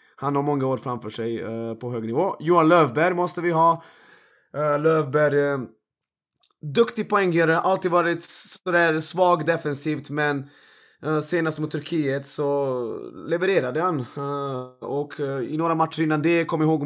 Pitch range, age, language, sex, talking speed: 135-165 Hz, 20-39, Swedish, male, 155 wpm